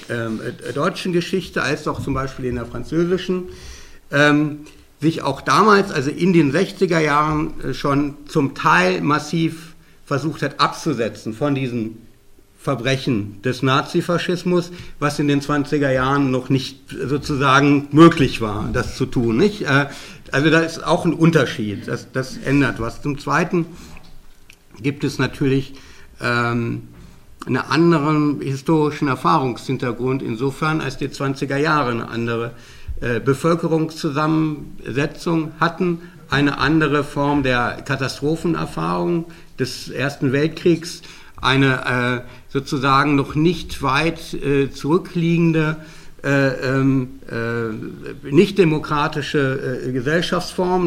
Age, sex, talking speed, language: 60-79, male, 115 wpm, German